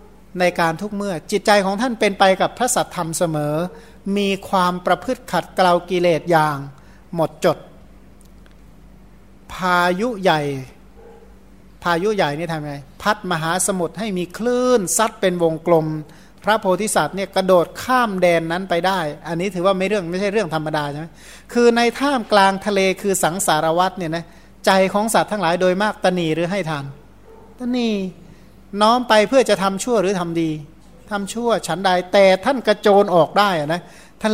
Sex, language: male, Thai